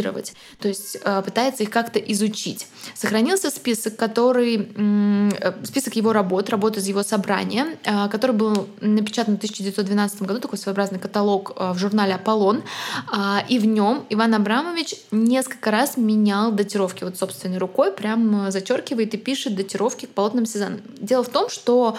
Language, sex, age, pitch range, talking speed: Russian, female, 20-39, 195-230 Hz, 140 wpm